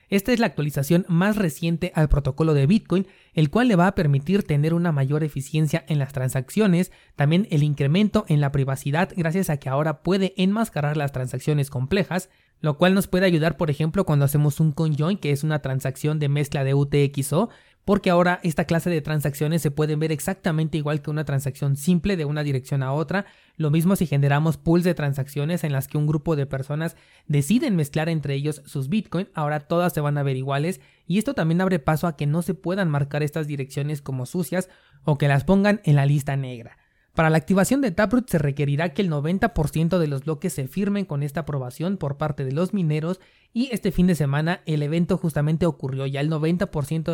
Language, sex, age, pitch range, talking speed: Spanish, male, 30-49, 145-180 Hz, 205 wpm